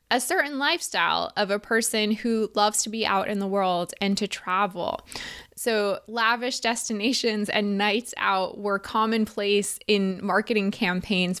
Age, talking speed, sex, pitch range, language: 20-39, 145 wpm, female, 190-230 Hz, English